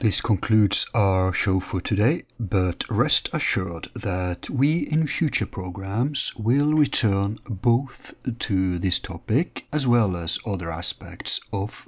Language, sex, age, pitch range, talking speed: English, male, 60-79, 95-145 Hz, 130 wpm